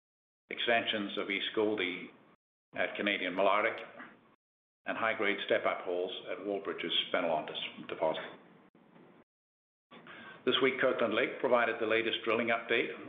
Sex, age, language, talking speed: male, 50-69, English, 110 wpm